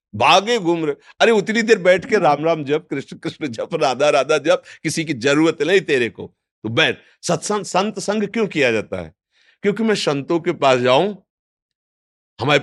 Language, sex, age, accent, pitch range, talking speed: Hindi, male, 50-69, native, 125-165 Hz, 175 wpm